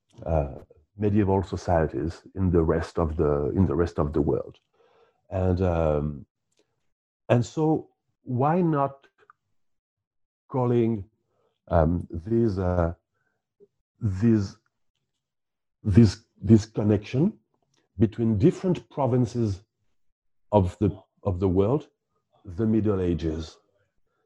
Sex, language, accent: male, English, French